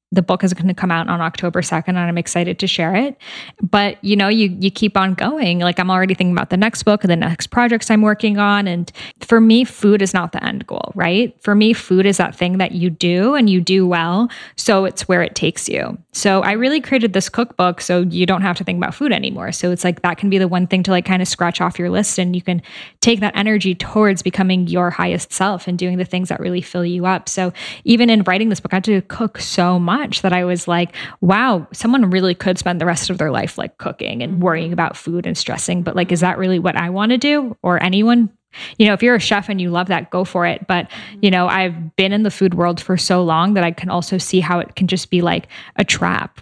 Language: English